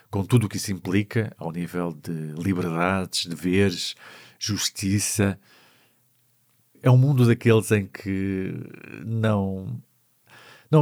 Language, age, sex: Portuguese, 50-69, male